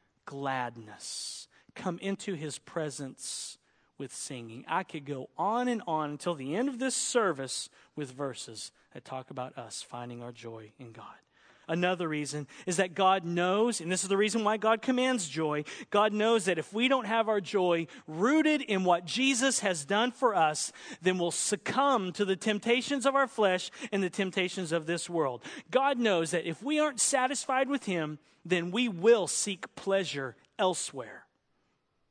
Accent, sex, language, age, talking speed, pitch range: American, male, English, 40-59, 170 wpm, 150-245 Hz